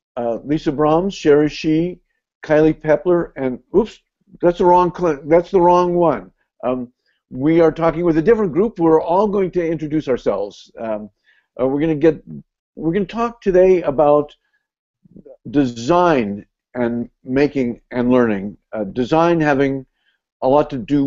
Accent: American